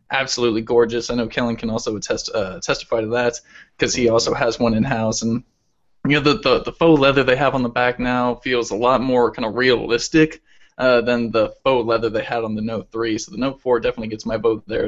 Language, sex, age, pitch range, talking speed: English, male, 20-39, 120-145 Hz, 240 wpm